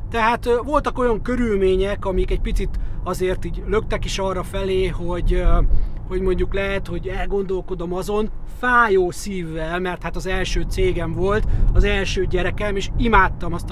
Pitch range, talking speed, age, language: 175-215 Hz, 145 wpm, 30-49, Hungarian